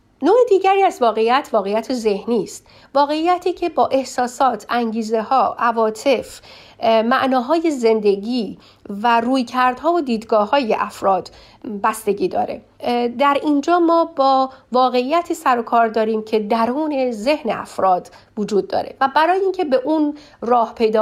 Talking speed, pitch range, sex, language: 135 wpm, 215-275 Hz, female, Persian